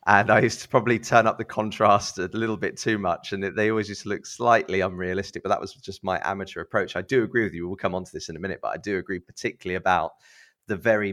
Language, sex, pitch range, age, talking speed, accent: English, male, 90-105 Hz, 30-49, 270 wpm, British